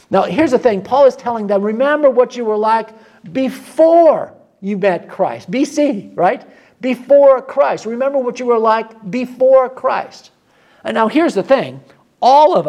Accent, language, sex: American, English, male